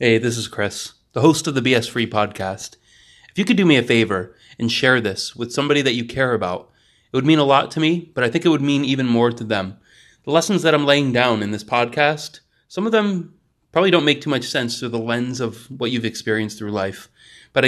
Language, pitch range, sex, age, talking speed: English, 105-140 Hz, male, 30-49, 245 wpm